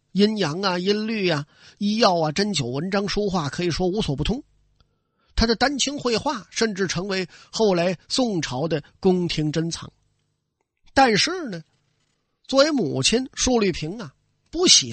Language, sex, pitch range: Chinese, male, 150-225 Hz